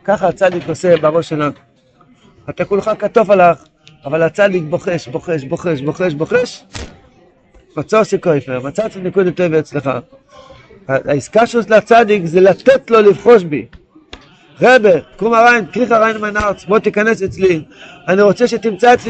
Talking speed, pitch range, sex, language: 105 wpm, 160-205 Hz, male, Hebrew